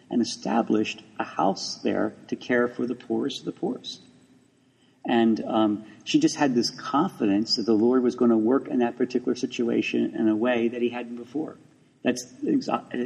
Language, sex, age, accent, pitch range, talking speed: English, male, 50-69, American, 110-130 Hz, 185 wpm